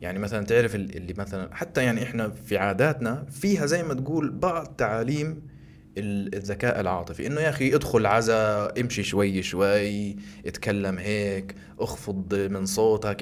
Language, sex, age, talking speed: Arabic, male, 20-39, 140 wpm